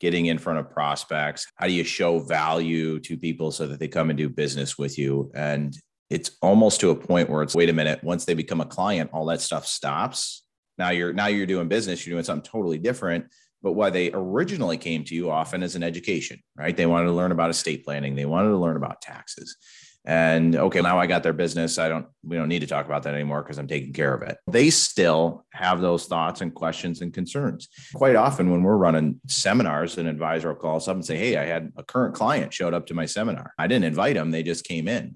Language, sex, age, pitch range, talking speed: English, male, 30-49, 75-85 Hz, 240 wpm